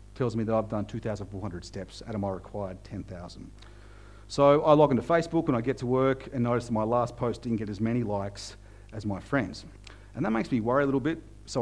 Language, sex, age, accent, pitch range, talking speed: English, male, 40-59, Australian, 105-135 Hz, 230 wpm